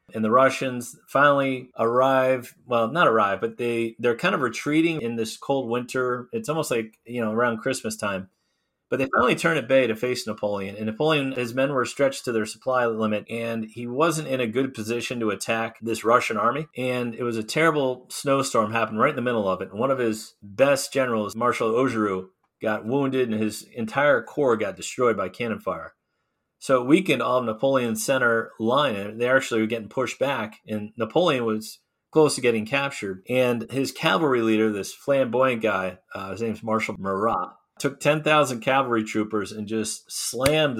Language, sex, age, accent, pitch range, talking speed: English, male, 30-49, American, 110-135 Hz, 185 wpm